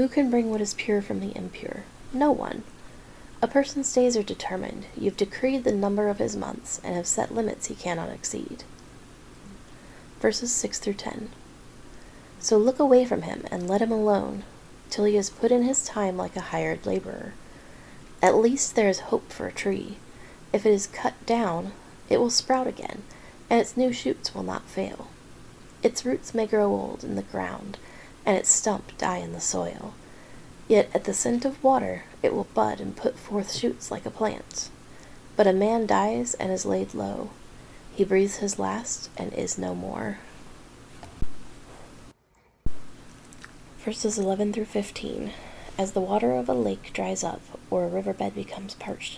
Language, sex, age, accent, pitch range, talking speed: English, female, 30-49, American, 185-235 Hz, 175 wpm